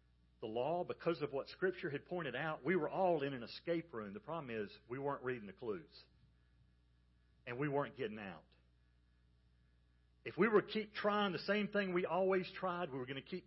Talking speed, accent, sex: 205 wpm, American, male